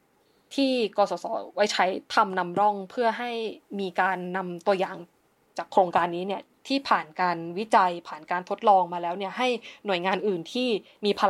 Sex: female